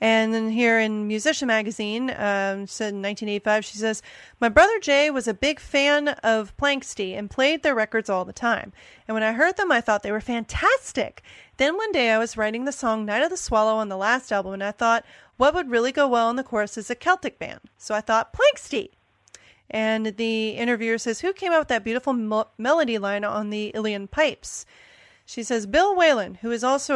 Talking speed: 215 wpm